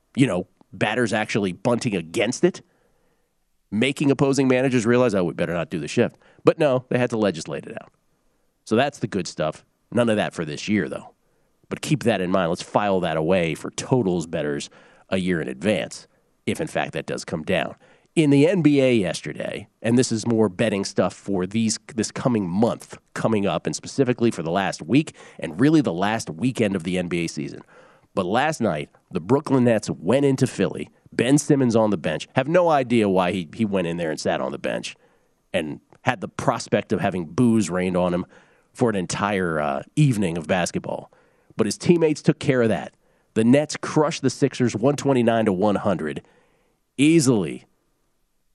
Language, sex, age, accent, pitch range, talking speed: English, male, 40-59, American, 100-140 Hz, 190 wpm